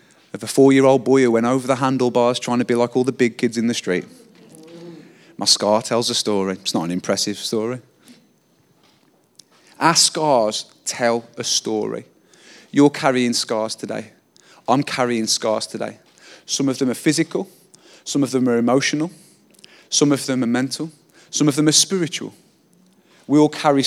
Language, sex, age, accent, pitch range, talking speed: English, male, 30-49, British, 120-160 Hz, 165 wpm